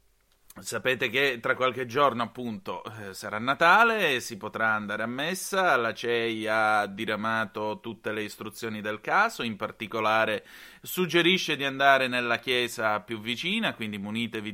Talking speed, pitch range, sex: 140 wpm, 110-140 Hz, male